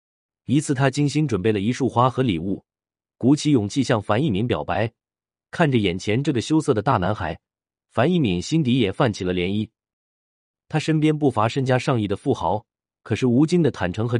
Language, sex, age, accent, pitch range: Chinese, male, 30-49, native, 95-135 Hz